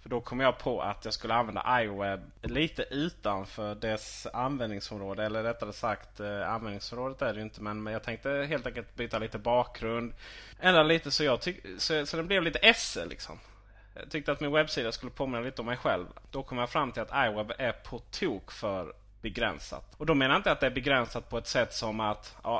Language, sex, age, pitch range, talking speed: Swedish, male, 20-39, 110-130 Hz, 205 wpm